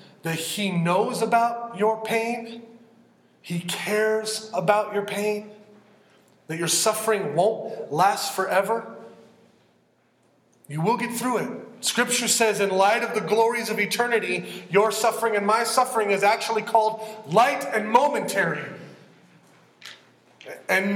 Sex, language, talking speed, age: male, English, 125 wpm, 30-49